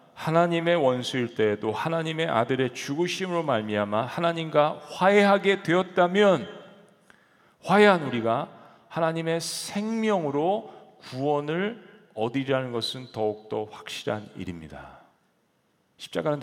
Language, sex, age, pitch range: Korean, male, 40-59, 100-160 Hz